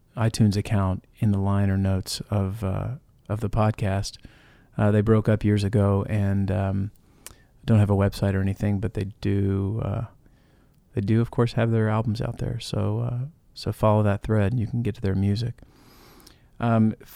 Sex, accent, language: male, American, English